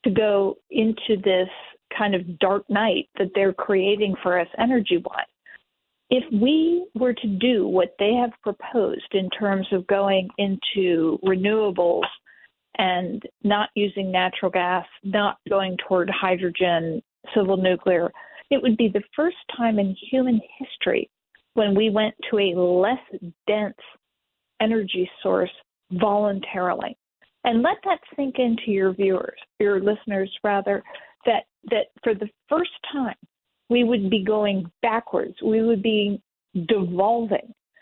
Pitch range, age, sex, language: 190-235 Hz, 40-59, female, English